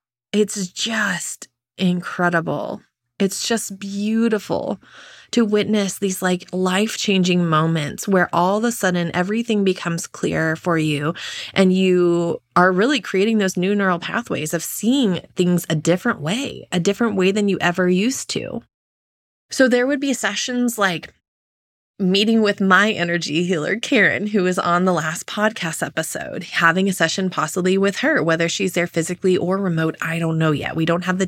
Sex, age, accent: female, 20-39, American